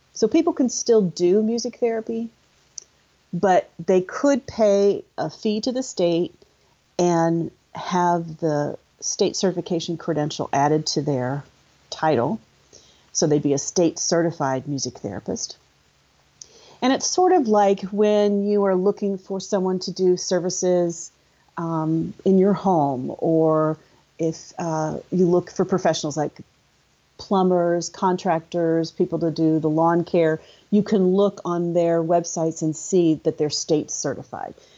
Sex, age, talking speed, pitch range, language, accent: female, 40-59, 135 wpm, 160-195 Hz, English, American